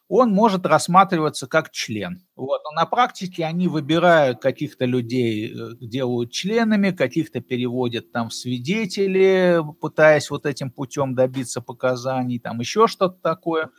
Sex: male